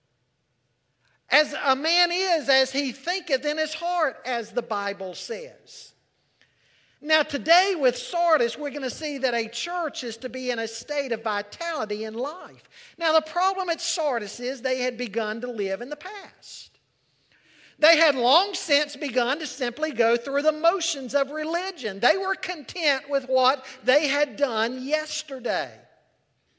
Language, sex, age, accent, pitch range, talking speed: English, male, 50-69, American, 240-315 Hz, 160 wpm